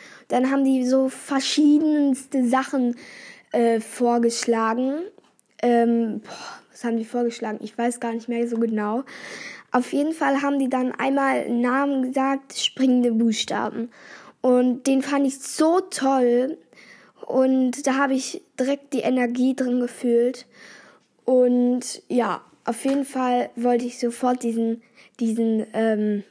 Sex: female